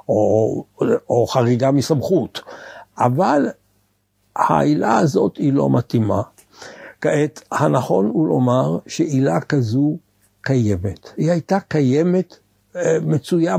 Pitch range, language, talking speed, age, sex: 120-170 Hz, Hebrew, 95 wpm, 60-79, male